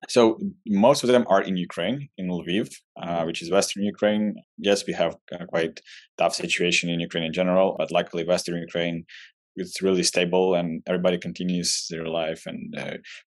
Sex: male